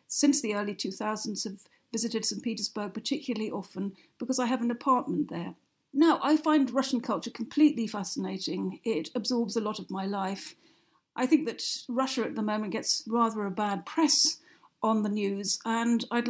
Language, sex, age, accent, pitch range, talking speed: English, female, 50-69, British, 215-255 Hz, 175 wpm